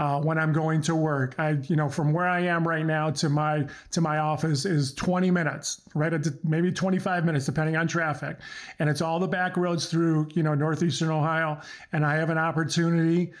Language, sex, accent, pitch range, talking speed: English, male, American, 145-170 Hz, 210 wpm